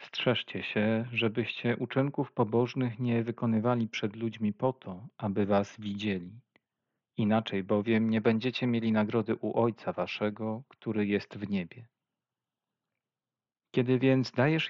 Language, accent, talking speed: Polish, native, 125 wpm